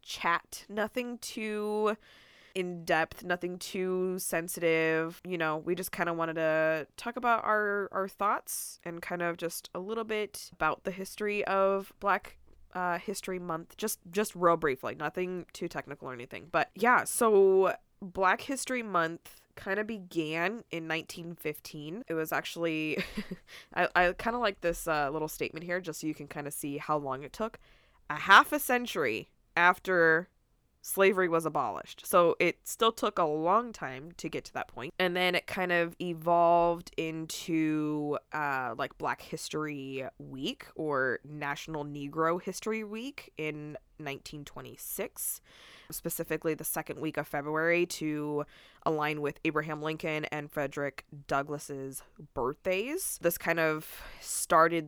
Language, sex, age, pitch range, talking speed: English, female, 20-39, 150-190 Hz, 150 wpm